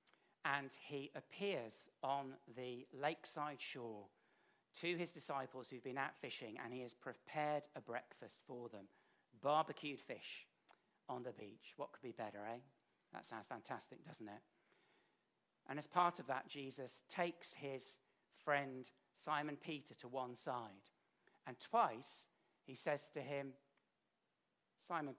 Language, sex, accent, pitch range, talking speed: English, male, British, 125-160 Hz, 140 wpm